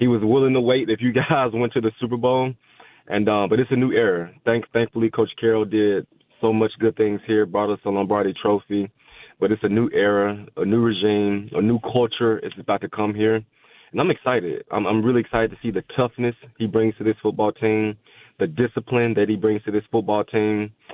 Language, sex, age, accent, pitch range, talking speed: English, male, 20-39, American, 105-115 Hz, 220 wpm